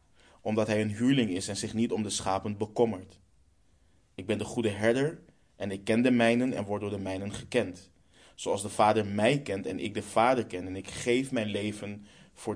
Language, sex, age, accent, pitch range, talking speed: Dutch, male, 20-39, Dutch, 95-115 Hz, 210 wpm